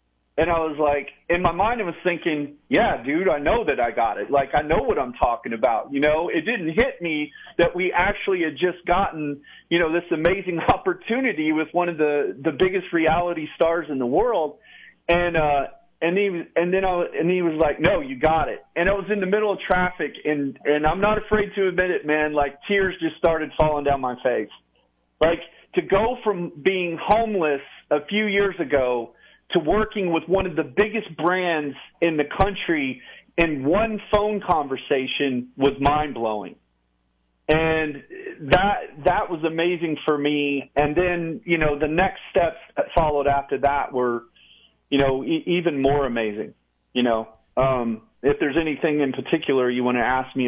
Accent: American